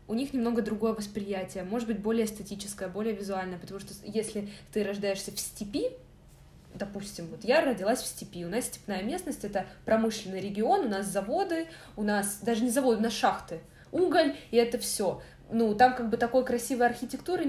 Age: 20-39